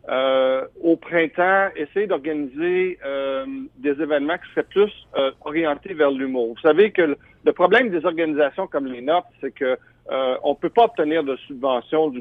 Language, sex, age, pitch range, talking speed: French, male, 50-69, 135-180 Hz, 175 wpm